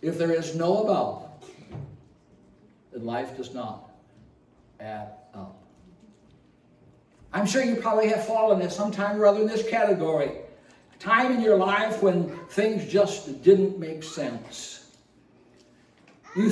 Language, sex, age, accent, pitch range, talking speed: English, male, 60-79, American, 155-215 Hz, 135 wpm